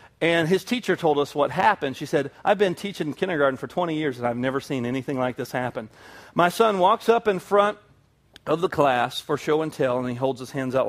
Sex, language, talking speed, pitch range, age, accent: male, English, 235 wpm, 145-200 Hz, 40-59, American